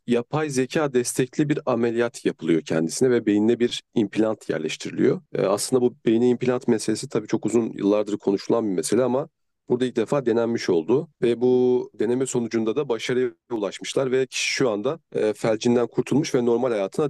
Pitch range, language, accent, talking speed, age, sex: 115-135 Hz, Turkish, native, 160 wpm, 40-59, male